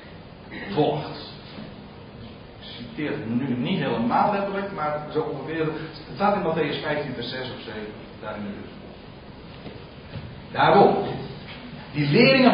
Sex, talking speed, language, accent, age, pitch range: male, 120 wpm, Dutch, Dutch, 50-69, 175-235 Hz